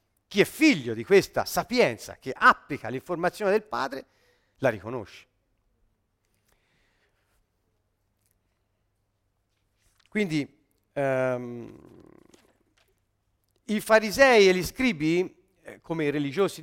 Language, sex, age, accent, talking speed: Italian, male, 50-69, native, 80 wpm